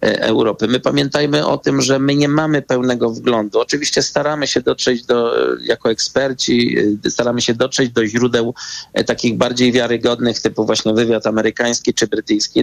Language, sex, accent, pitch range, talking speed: Polish, male, native, 110-125 Hz, 150 wpm